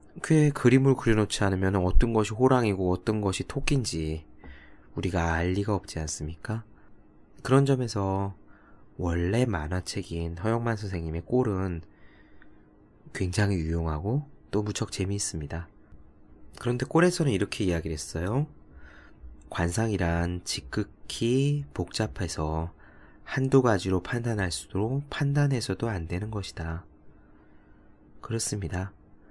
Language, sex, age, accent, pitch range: Korean, male, 20-39, native, 80-110 Hz